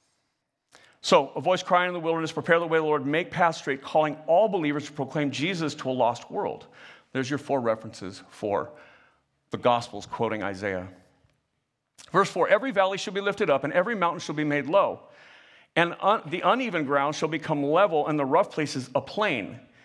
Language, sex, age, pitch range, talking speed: English, male, 50-69, 135-175 Hz, 195 wpm